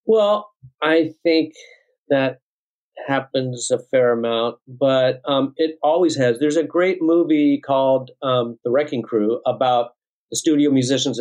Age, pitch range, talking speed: 50-69, 130-165 Hz, 140 wpm